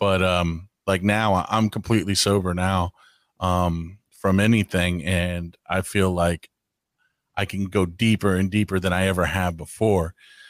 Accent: American